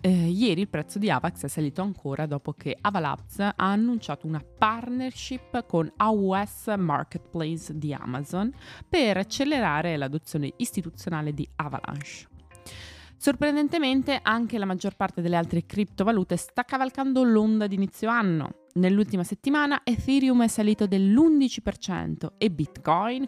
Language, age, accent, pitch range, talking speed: Italian, 20-39, native, 150-215 Hz, 125 wpm